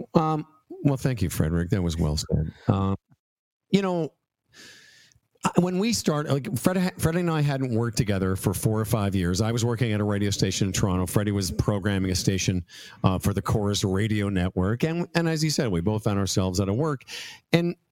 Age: 50-69